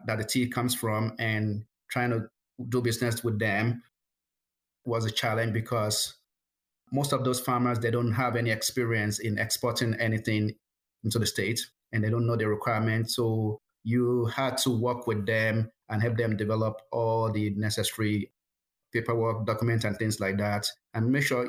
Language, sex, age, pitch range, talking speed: English, male, 30-49, 105-120 Hz, 170 wpm